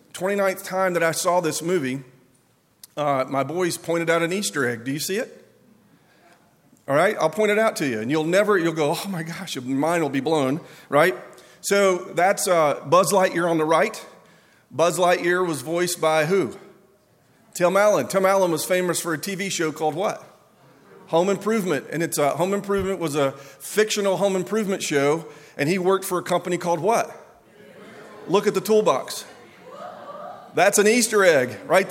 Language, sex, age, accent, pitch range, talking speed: English, male, 40-59, American, 155-200 Hz, 180 wpm